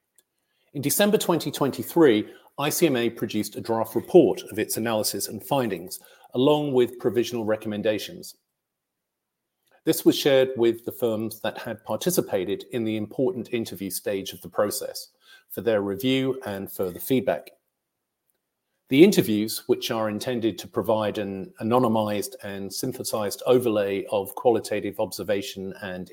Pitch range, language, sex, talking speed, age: 105-145 Hz, English, male, 130 wpm, 40-59